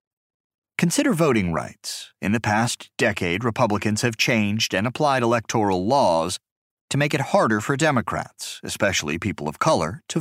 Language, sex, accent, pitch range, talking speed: English, male, American, 95-130 Hz, 145 wpm